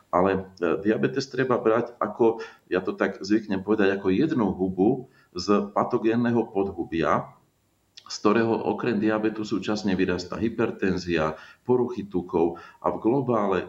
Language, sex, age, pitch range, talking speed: Slovak, male, 40-59, 90-105 Hz, 125 wpm